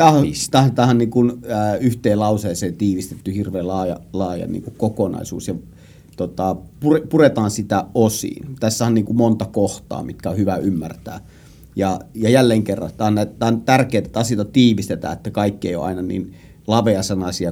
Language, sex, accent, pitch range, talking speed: Finnish, male, native, 95-120 Hz, 145 wpm